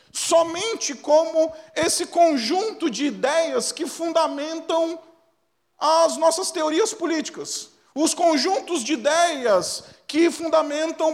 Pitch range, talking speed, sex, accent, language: 220-310 Hz, 95 wpm, male, Brazilian, Portuguese